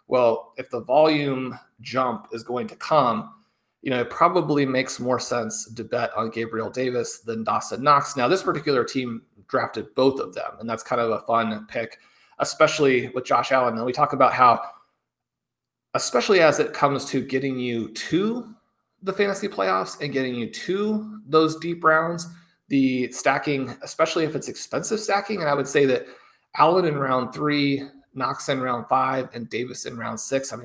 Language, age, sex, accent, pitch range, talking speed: English, 30-49, male, American, 125-150 Hz, 180 wpm